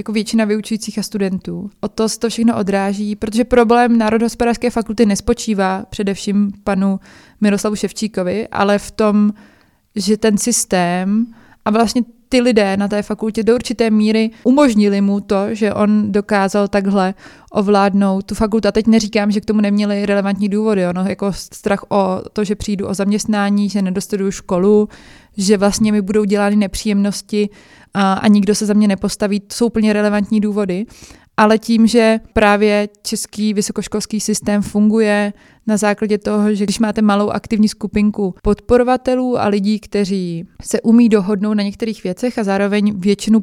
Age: 20-39